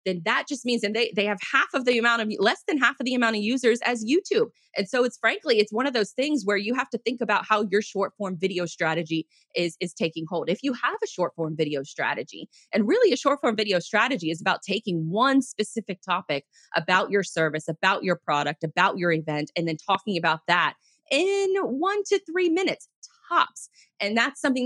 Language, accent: English, American